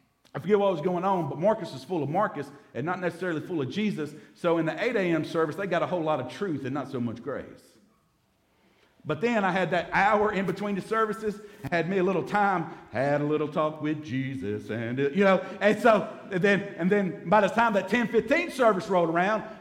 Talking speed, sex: 225 wpm, male